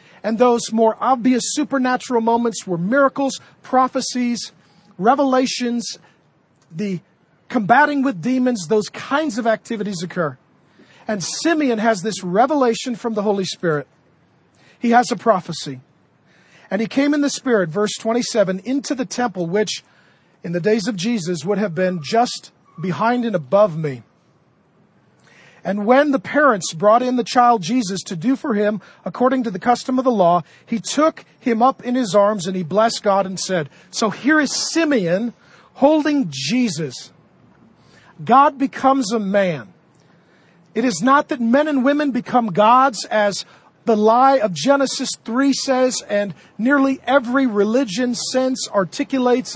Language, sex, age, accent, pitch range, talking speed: English, male, 40-59, American, 185-255 Hz, 150 wpm